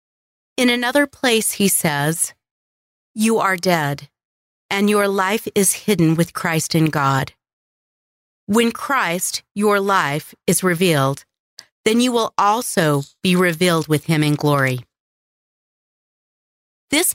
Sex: female